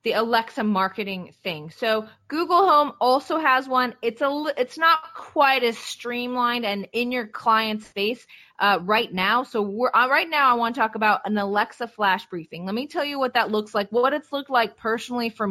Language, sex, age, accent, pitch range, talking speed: English, female, 20-39, American, 210-265 Hz, 205 wpm